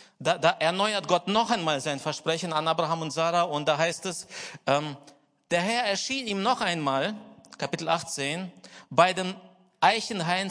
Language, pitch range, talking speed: German, 165-220 Hz, 160 wpm